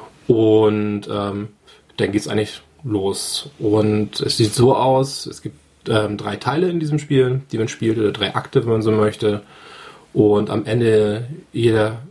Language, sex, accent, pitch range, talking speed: German, male, German, 110-140 Hz, 170 wpm